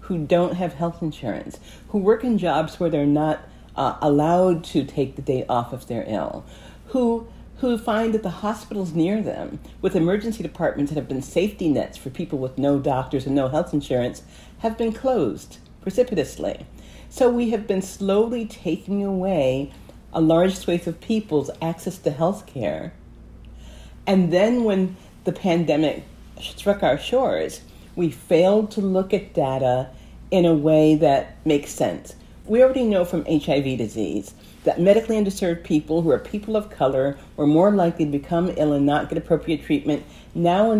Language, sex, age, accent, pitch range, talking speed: English, female, 50-69, American, 150-200 Hz, 170 wpm